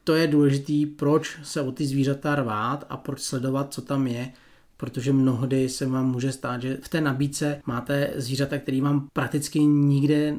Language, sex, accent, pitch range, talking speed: Czech, male, native, 135-155 Hz, 180 wpm